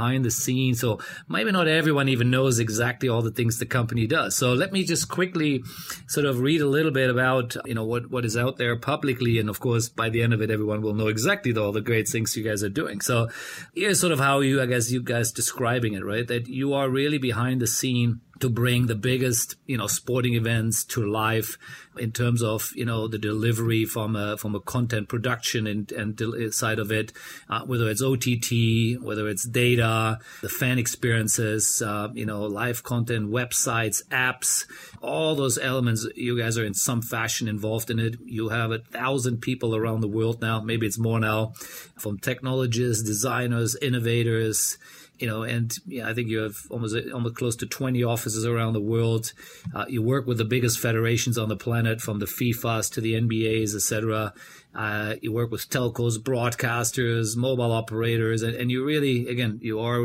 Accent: German